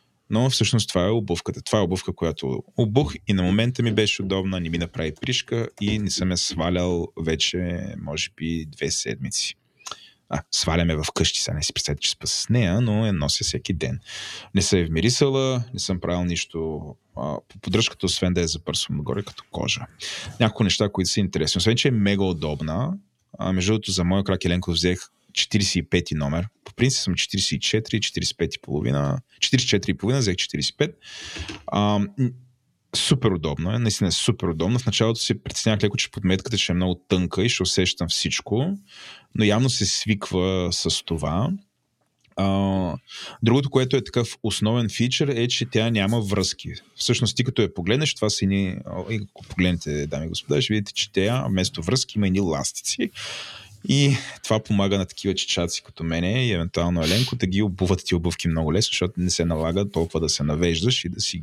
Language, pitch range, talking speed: Bulgarian, 90-115 Hz, 185 wpm